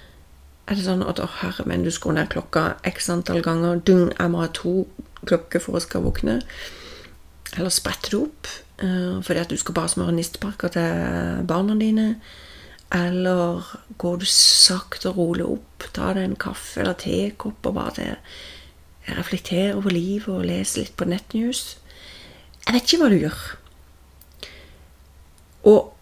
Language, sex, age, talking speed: English, female, 30-49, 145 wpm